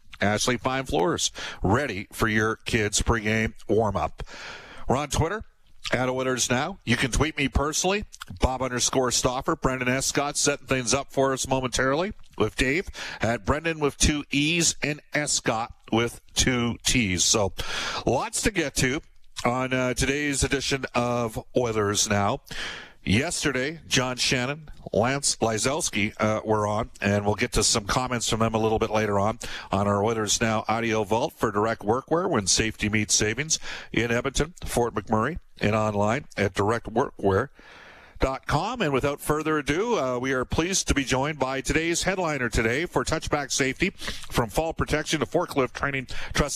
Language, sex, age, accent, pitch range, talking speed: English, male, 50-69, American, 110-145 Hz, 155 wpm